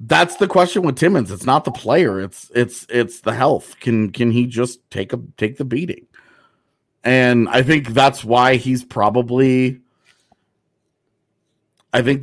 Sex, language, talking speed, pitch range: male, English, 155 wpm, 110-135 Hz